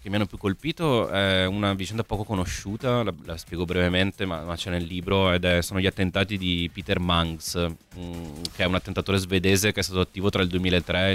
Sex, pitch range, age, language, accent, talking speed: male, 90-105 Hz, 30-49, Italian, native, 220 wpm